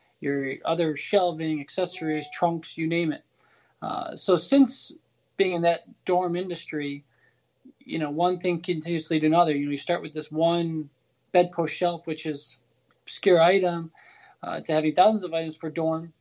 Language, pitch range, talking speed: English, 155-180 Hz, 160 wpm